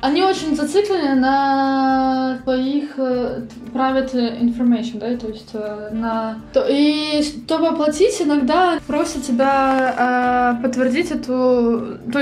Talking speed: 100 wpm